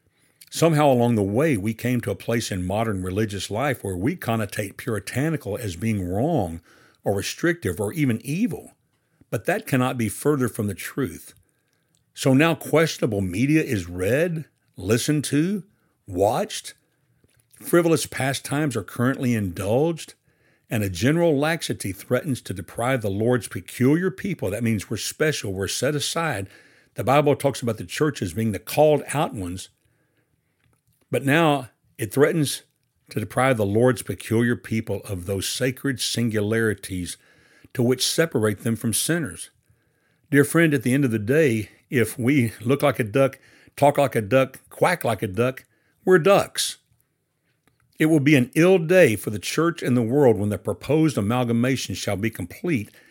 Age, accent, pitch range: 60-79, American, 105-145 Hz